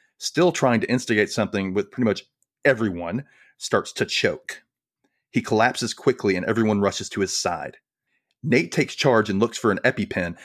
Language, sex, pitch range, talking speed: English, male, 100-130 Hz, 165 wpm